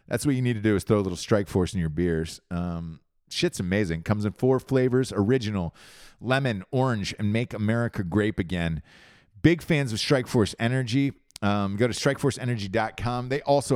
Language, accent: English, American